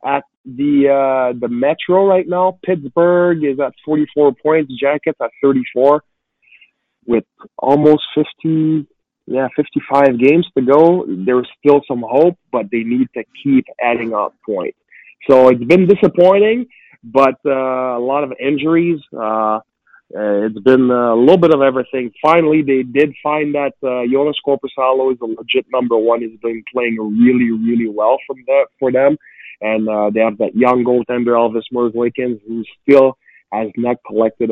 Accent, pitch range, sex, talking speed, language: American, 120-150 Hz, male, 160 wpm, English